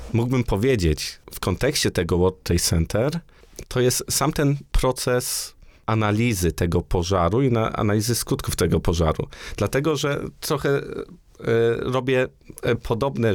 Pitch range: 95-130 Hz